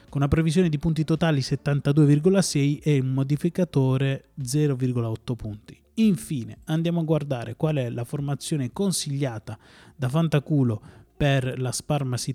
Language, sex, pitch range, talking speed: Italian, male, 125-160 Hz, 125 wpm